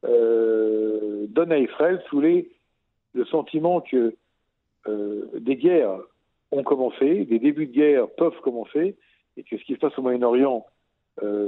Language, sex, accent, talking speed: French, male, French, 145 wpm